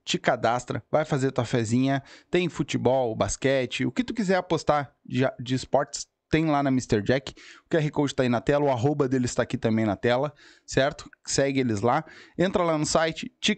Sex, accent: male, Brazilian